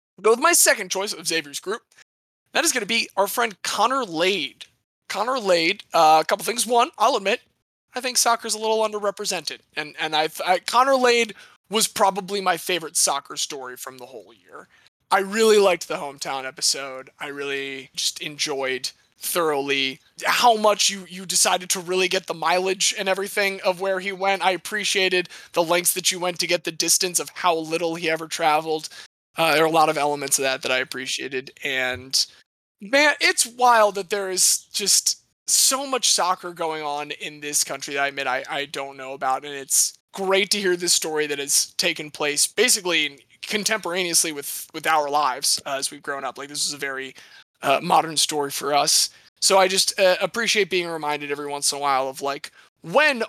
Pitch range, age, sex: 145-200 Hz, 20-39, male